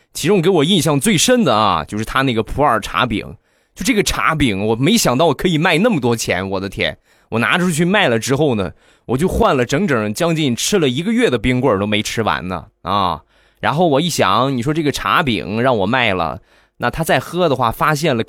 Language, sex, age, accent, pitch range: Chinese, male, 20-39, native, 110-140 Hz